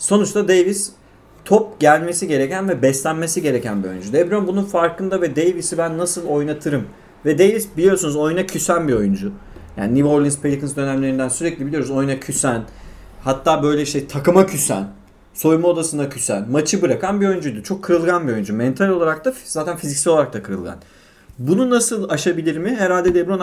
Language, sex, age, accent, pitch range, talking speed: Turkish, male, 30-49, native, 120-175 Hz, 165 wpm